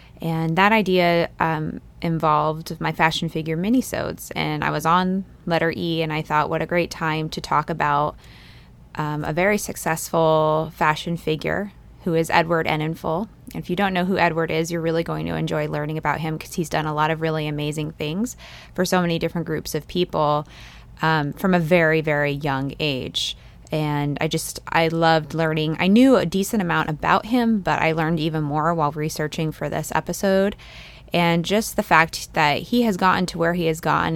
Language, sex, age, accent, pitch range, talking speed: English, female, 20-39, American, 155-175 Hz, 195 wpm